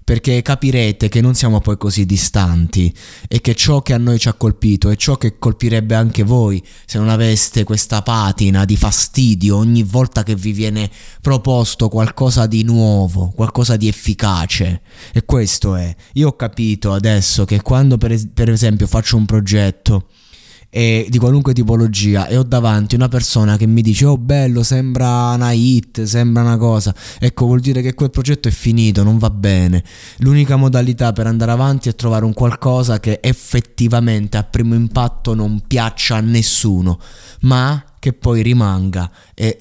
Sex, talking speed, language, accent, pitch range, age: male, 165 wpm, Italian, native, 105-130 Hz, 20-39